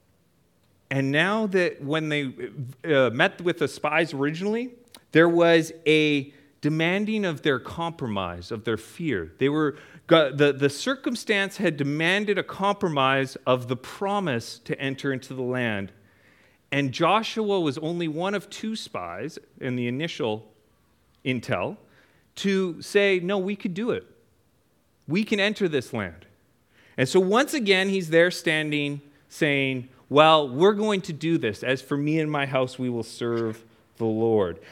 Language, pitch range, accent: English, 130-195 Hz, American